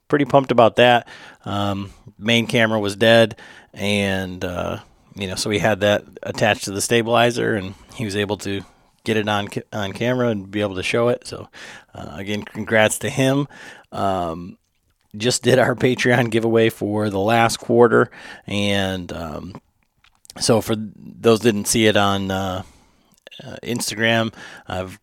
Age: 40-59